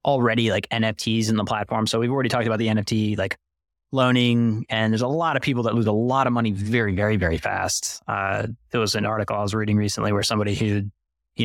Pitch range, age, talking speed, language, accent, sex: 105-125 Hz, 20-39, 230 wpm, English, American, male